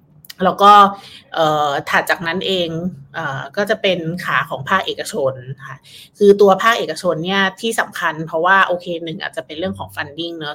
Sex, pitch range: female, 150-185 Hz